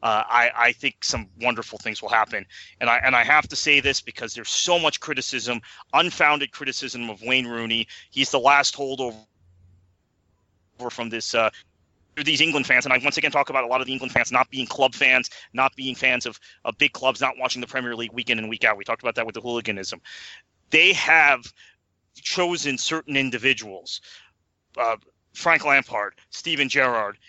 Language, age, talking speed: English, 30-49, 190 wpm